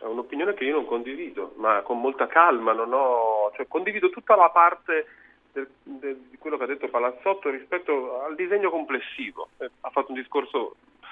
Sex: male